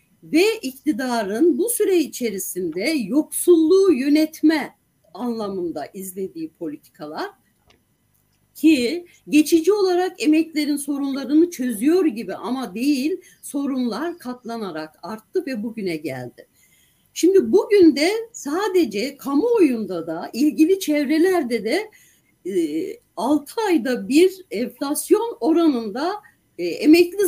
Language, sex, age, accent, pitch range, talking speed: Turkish, female, 60-79, native, 260-360 Hz, 90 wpm